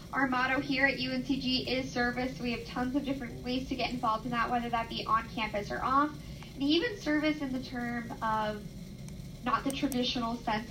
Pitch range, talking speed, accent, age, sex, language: 225-275 Hz, 200 wpm, American, 10-29, female, English